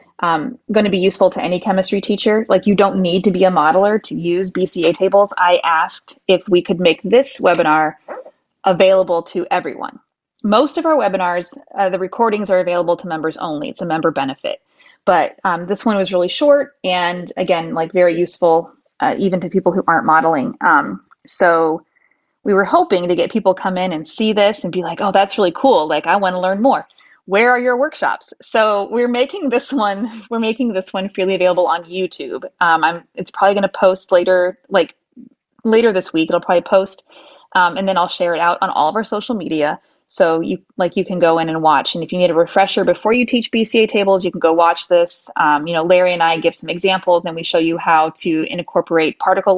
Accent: American